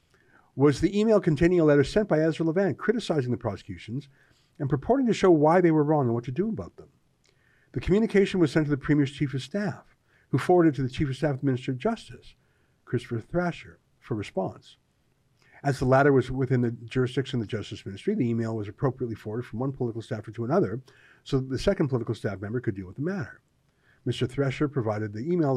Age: 50-69